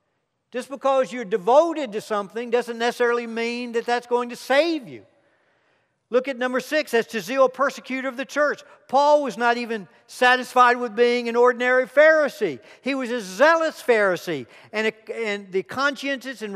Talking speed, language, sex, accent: 170 wpm, English, male, American